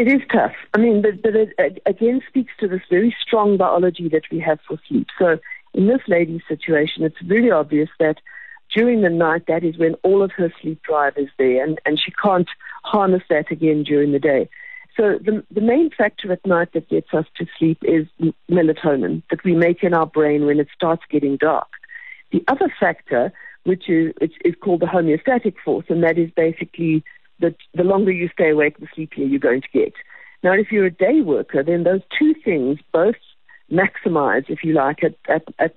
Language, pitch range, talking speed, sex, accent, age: English, 155-210 Hz, 200 wpm, female, British, 50-69